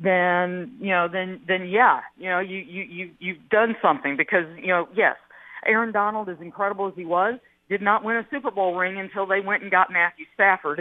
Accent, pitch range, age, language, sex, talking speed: American, 175-210 Hz, 50-69, English, female, 215 wpm